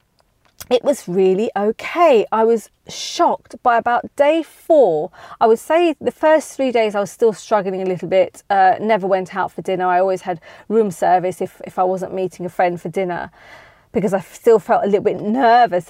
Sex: female